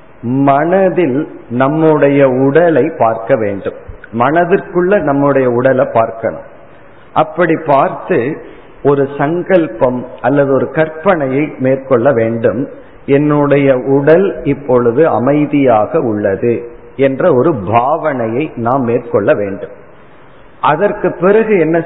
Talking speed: 85 wpm